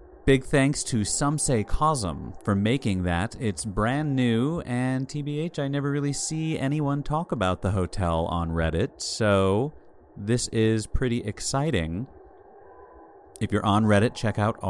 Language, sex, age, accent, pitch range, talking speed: English, male, 30-49, American, 95-135 Hz, 145 wpm